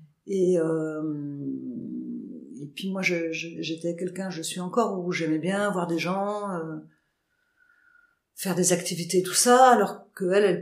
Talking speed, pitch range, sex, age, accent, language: 160 wpm, 165-200 Hz, female, 50-69, French, French